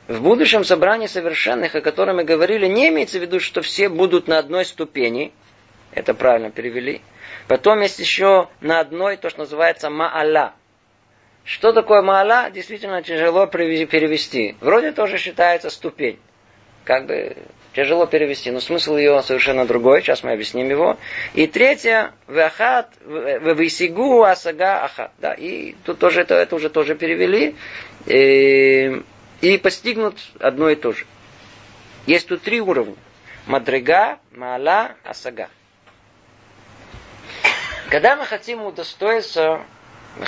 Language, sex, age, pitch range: Russian, male, 20-39, 130-195 Hz